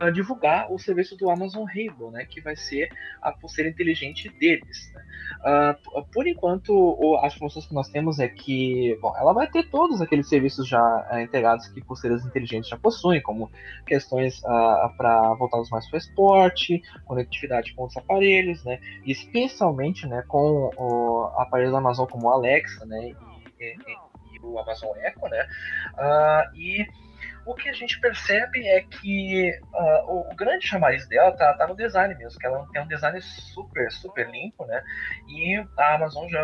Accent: Brazilian